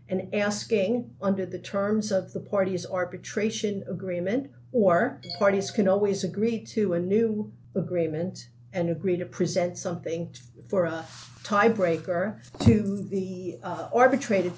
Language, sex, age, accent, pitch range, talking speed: English, female, 50-69, American, 175-215 Hz, 130 wpm